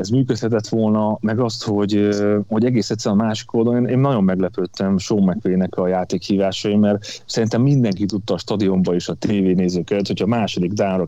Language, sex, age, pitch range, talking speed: Hungarian, male, 30-49, 95-120 Hz, 180 wpm